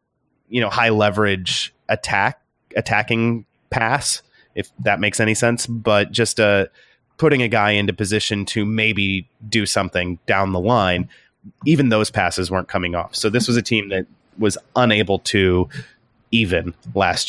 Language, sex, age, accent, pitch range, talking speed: English, male, 30-49, American, 95-115 Hz, 155 wpm